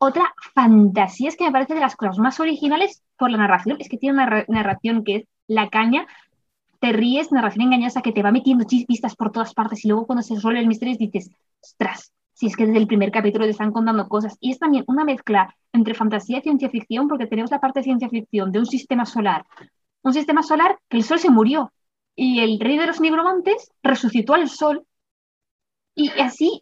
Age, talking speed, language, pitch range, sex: 20-39, 215 wpm, Spanish, 220-275 Hz, female